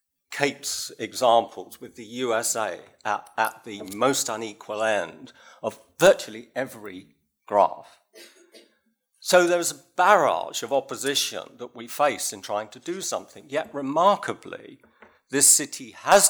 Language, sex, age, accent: English, male, 50-69, British